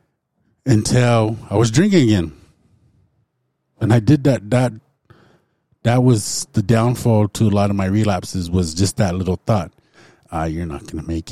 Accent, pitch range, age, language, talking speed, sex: American, 90-110 Hz, 30-49, English, 165 wpm, male